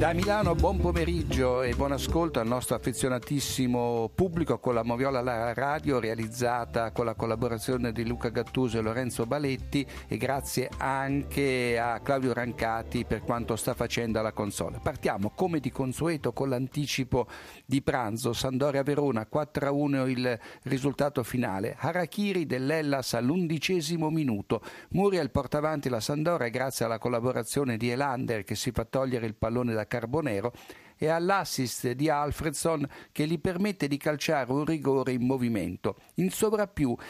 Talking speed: 140 wpm